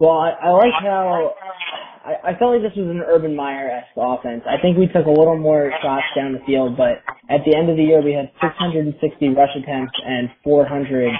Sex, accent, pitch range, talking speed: male, American, 135-150 Hz, 215 wpm